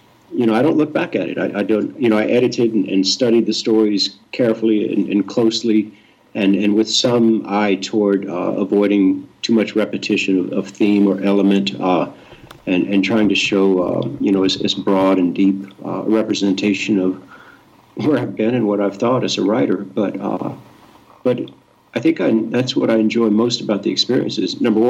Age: 50-69